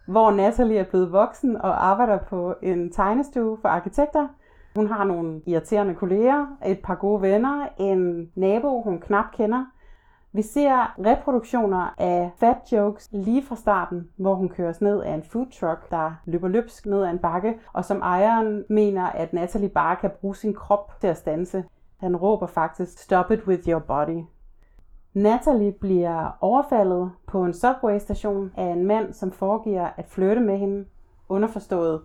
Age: 30-49